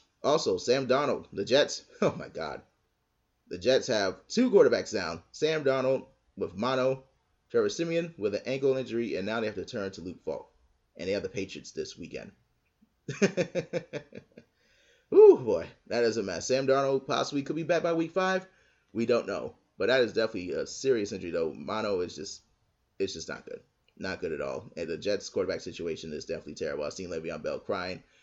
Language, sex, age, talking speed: English, male, 30-49, 190 wpm